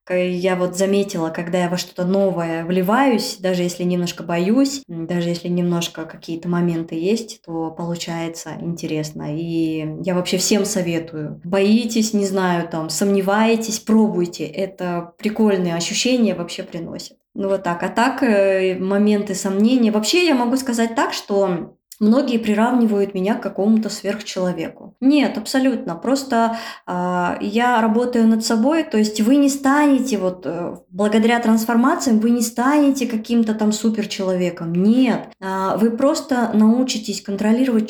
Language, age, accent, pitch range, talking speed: Russian, 20-39, native, 180-230 Hz, 135 wpm